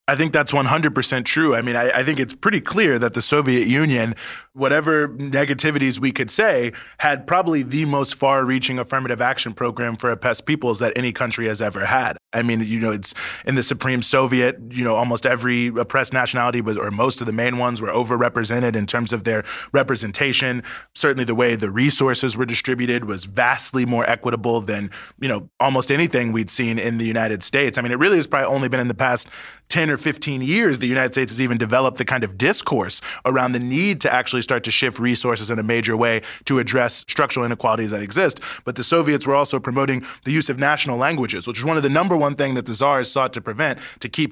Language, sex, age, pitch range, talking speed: English, male, 20-39, 120-135 Hz, 215 wpm